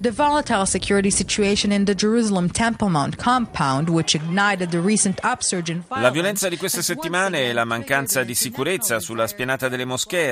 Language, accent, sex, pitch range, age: Italian, native, male, 110-150 Hz, 30-49